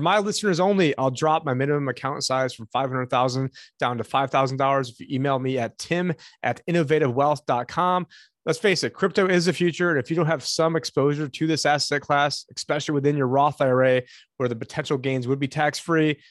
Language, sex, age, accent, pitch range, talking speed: English, male, 30-49, American, 130-155 Hz, 190 wpm